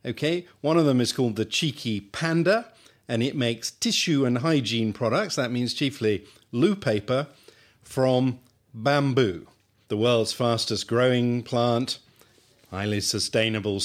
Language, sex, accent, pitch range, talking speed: English, male, British, 100-125 Hz, 130 wpm